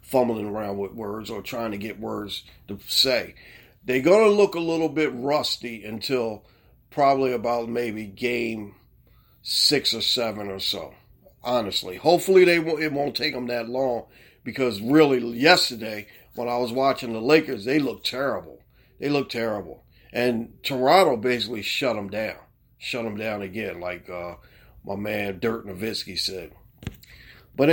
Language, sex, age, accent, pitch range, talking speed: English, male, 40-59, American, 110-140 Hz, 150 wpm